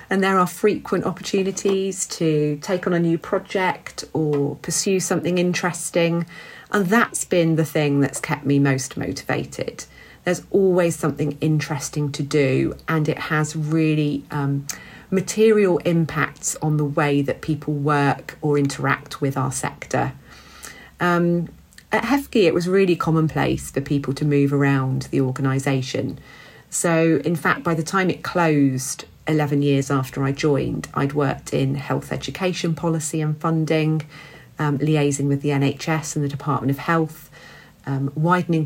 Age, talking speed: 40-59, 150 wpm